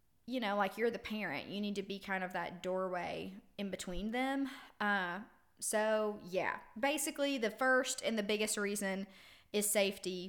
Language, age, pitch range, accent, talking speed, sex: English, 20-39, 195-240 Hz, American, 170 wpm, female